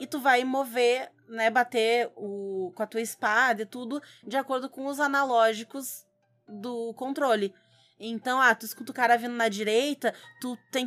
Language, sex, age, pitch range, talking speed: Portuguese, female, 20-39, 220-265 Hz, 170 wpm